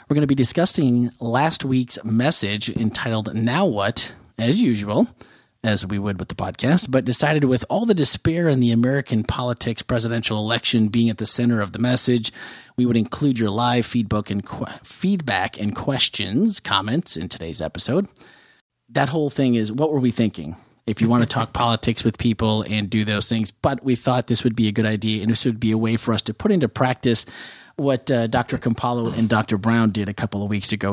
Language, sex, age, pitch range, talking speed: English, male, 30-49, 110-130 Hz, 200 wpm